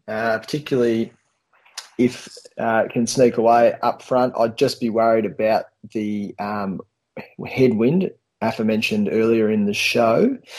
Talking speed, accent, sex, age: 130 wpm, Australian, male, 20-39